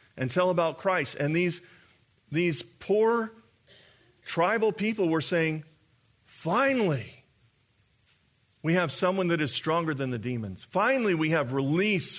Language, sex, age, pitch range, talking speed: English, male, 40-59, 120-175 Hz, 130 wpm